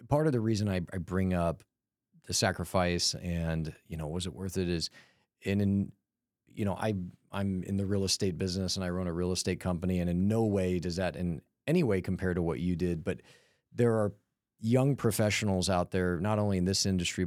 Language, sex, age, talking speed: English, male, 30-49, 210 wpm